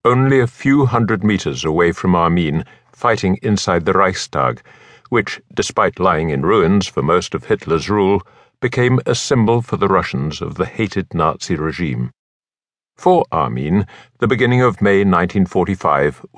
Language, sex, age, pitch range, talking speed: English, male, 60-79, 95-130 Hz, 145 wpm